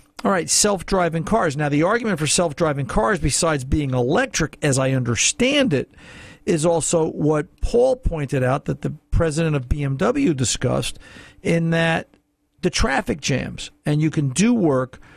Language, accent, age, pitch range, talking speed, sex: English, American, 50-69, 135-160 Hz, 155 wpm, male